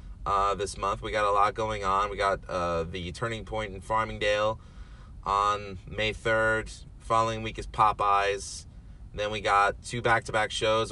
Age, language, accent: 30-49, English, American